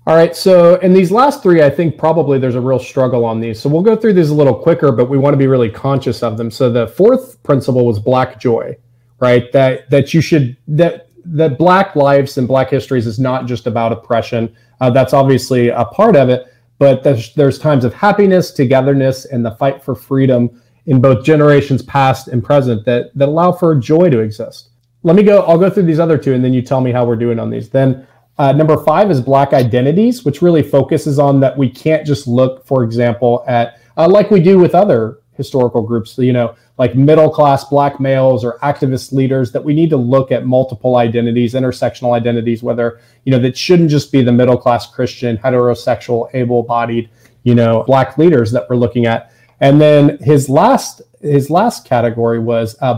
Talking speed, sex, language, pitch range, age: 210 wpm, male, English, 120-150 Hz, 30-49